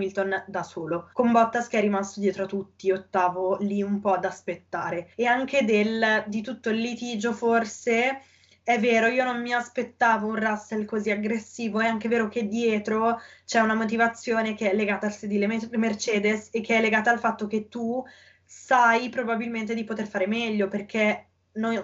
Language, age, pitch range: Italian, 20-39, 205-240 Hz